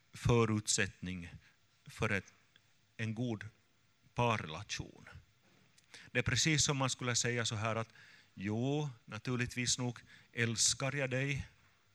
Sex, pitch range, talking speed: male, 110-125 Hz, 105 wpm